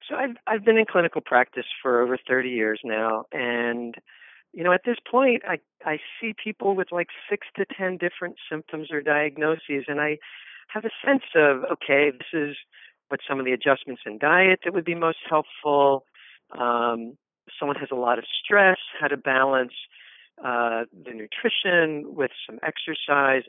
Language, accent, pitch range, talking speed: English, American, 125-170 Hz, 175 wpm